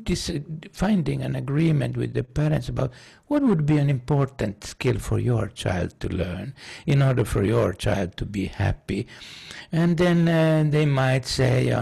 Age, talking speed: 60-79, 170 wpm